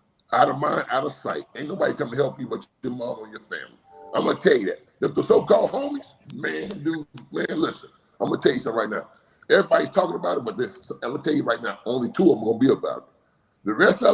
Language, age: English, 30-49